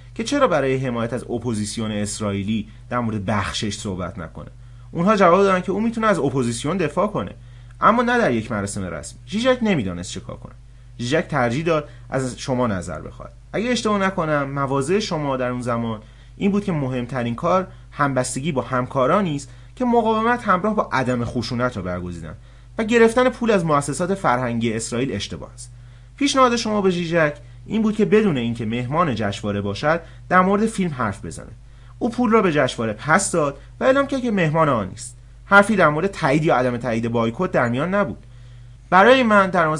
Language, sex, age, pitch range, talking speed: English, male, 30-49, 120-190 Hz, 180 wpm